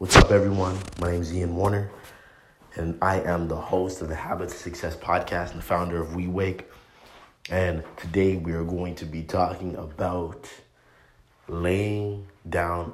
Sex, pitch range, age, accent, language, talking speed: male, 85-95 Hz, 30-49, American, English, 165 wpm